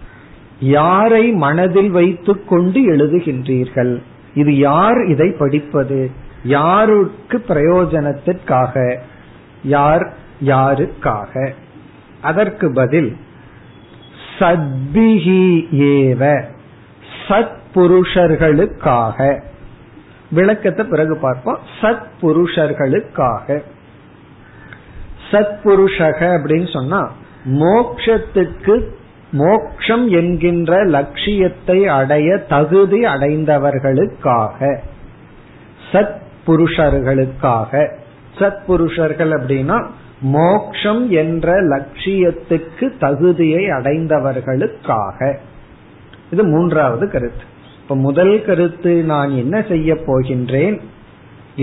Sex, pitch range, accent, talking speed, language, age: male, 135-185 Hz, native, 60 wpm, Tamil, 50-69